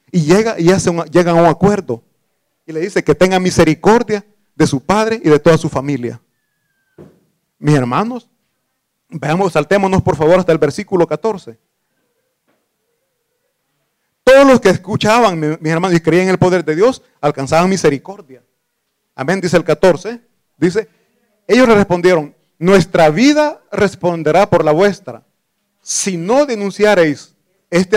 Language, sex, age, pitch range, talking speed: Italian, male, 40-59, 150-210 Hz, 140 wpm